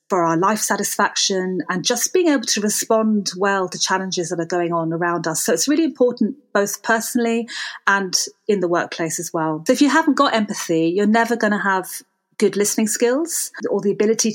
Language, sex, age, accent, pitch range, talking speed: English, female, 30-49, British, 185-225 Hz, 200 wpm